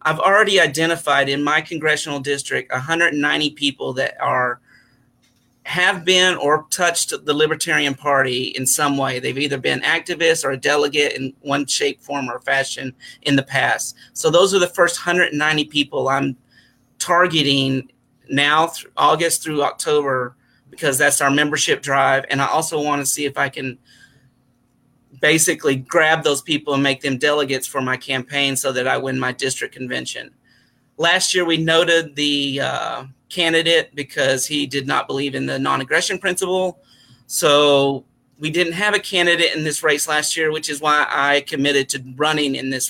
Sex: male